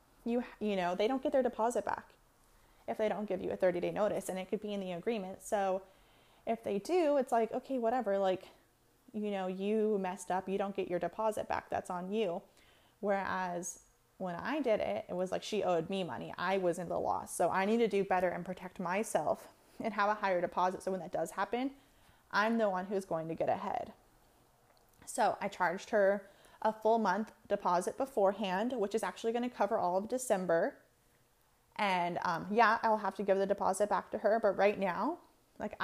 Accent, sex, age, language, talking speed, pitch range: American, female, 20-39, English, 210 wpm, 190-230 Hz